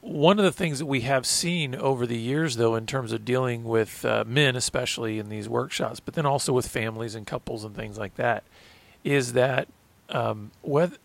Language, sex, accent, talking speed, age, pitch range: English, male, American, 200 wpm, 40-59, 120-155 Hz